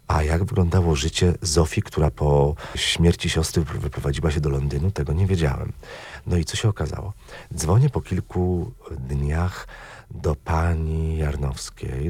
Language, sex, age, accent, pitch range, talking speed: Polish, male, 40-59, native, 75-95 Hz, 140 wpm